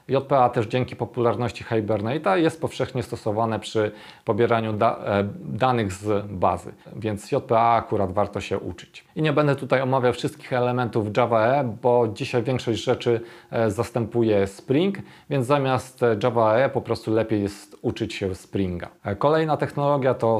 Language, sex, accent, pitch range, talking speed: Polish, male, native, 105-130 Hz, 150 wpm